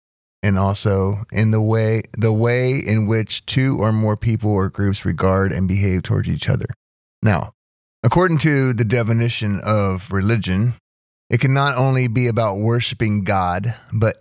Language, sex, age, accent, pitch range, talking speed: English, male, 30-49, American, 95-115 Hz, 155 wpm